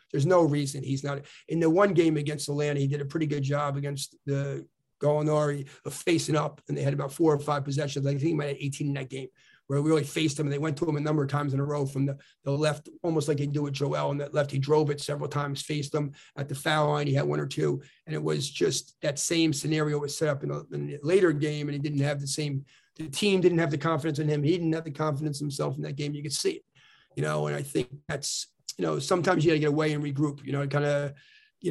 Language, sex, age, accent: English, male, 40-59, American